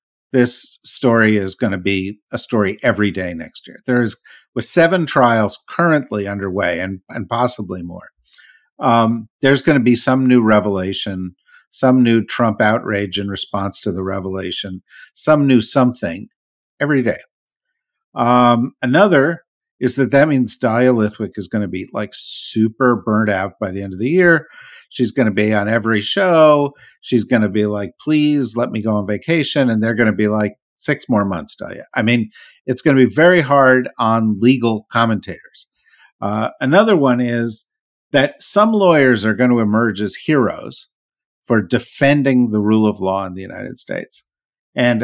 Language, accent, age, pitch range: English, American, 50-69, 105-130 Hz